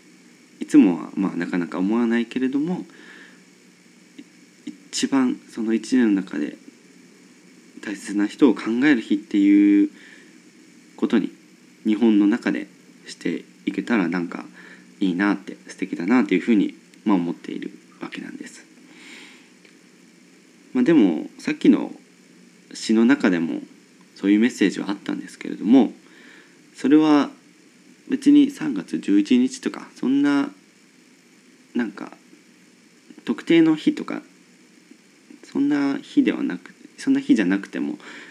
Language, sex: Japanese, male